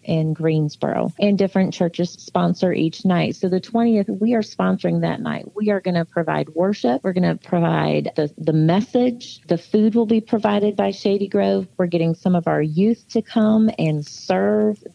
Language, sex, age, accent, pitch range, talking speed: English, female, 40-59, American, 170-220 Hz, 190 wpm